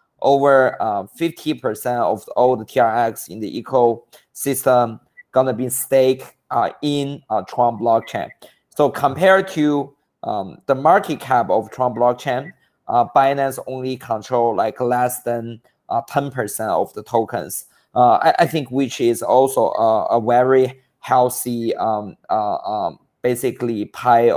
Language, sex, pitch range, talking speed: English, male, 115-135 Hz, 140 wpm